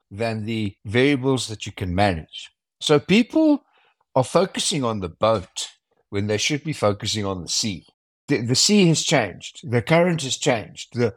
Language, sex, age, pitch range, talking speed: English, male, 60-79, 115-160 Hz, 170 wpm